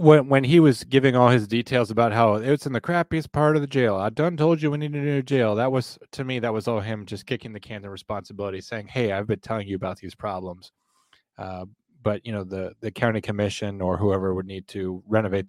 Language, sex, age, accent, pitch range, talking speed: English, male, 30-49, American, 100-120 Hz, 250 wpm